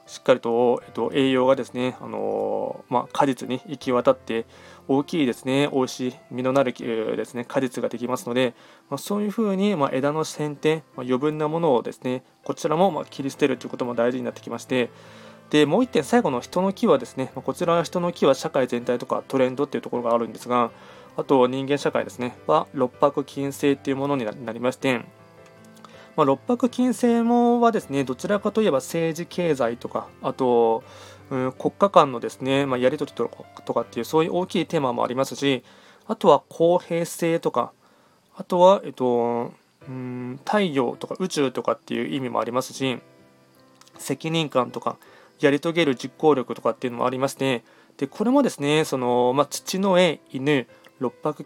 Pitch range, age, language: 125-165 Hz, 20-39, Japanese